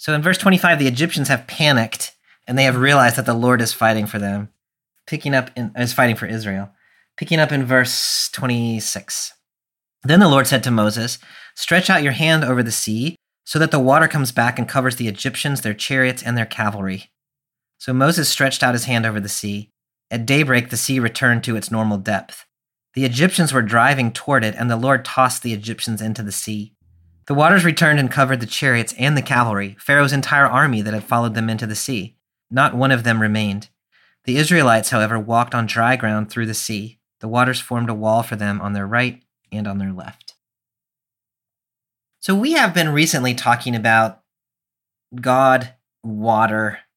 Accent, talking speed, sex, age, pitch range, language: American, 190 wpm, male, 40-59, 110-135 Hz, English